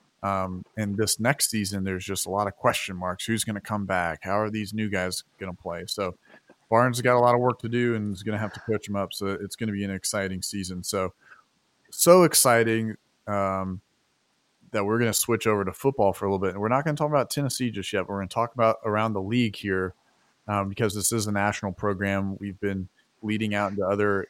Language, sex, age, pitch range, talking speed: English, male, 30-49, 100-115 Hz, 250 wpm